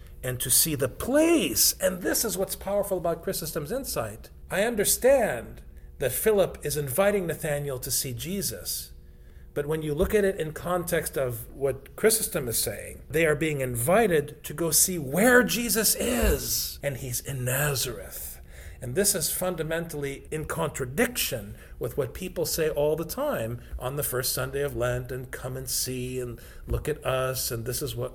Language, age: English, 50-69